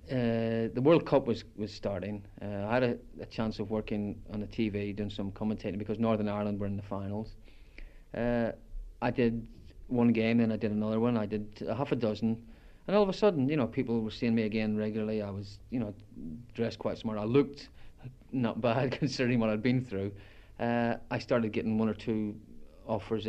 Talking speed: 205 wpm